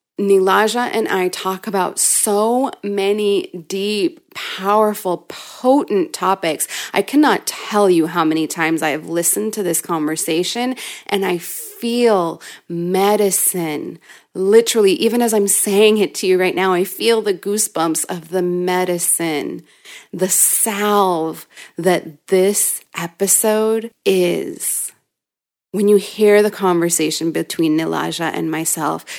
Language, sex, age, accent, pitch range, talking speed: English, female, 30-49, American, 170-210 Hz, 125 wpm